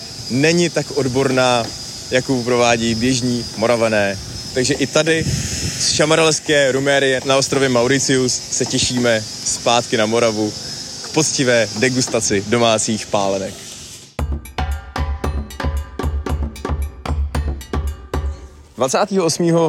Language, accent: Czech, native